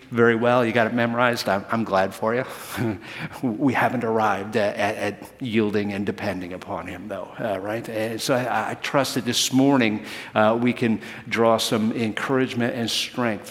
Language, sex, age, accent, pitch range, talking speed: English, male, 50-69, American, 105-125 Hz, 180 wpm